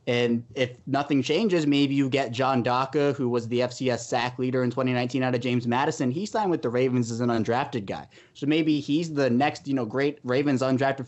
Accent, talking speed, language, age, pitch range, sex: American, 215 wpm, English, 20-39, 120-145 Hz, male